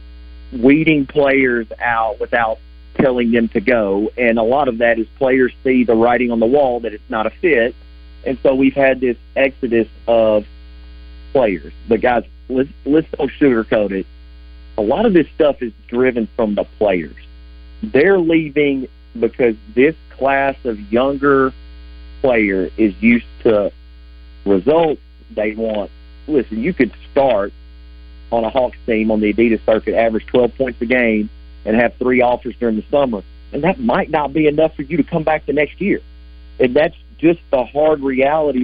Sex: male